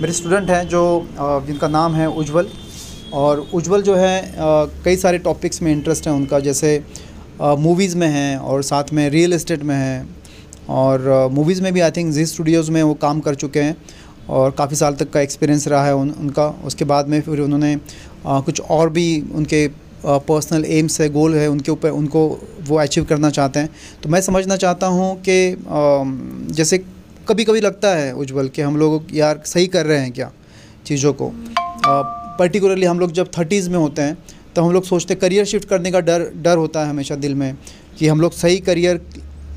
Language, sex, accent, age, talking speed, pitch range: Hindi, male, native, 30-49, 195 wpm, 145-180 Hz